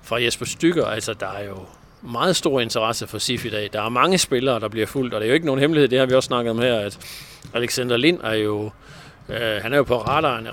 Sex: male